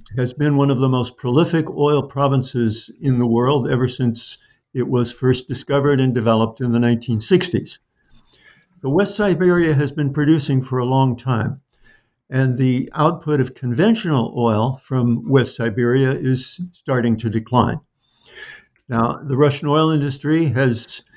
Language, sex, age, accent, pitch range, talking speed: English, male, 60-79, American, 120-145 Hz, 145 wpm